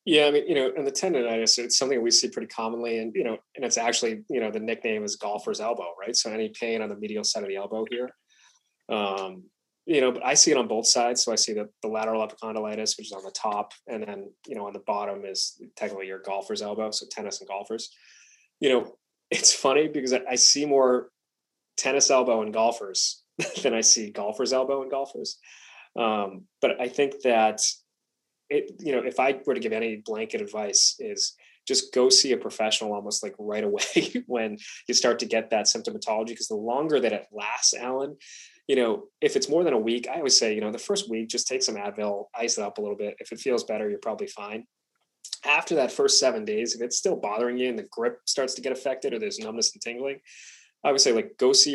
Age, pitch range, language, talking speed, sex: 30-49, 110-140 Hz, English, 230 wpm, male